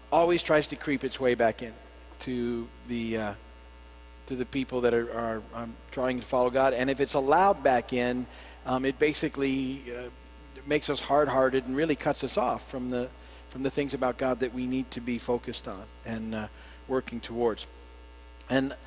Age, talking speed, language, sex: 50-69, 190 wpm, English, male